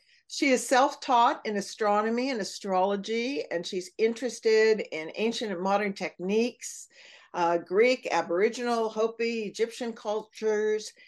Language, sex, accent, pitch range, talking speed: English, female, American, 190-265 Hz, 115 wpm